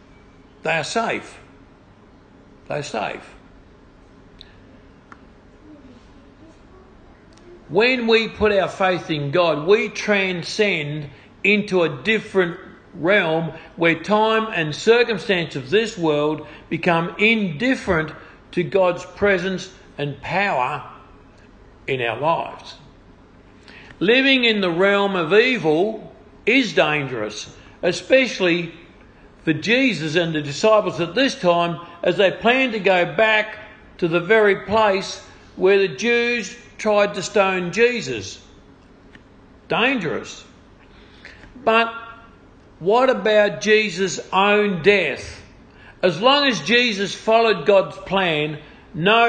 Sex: male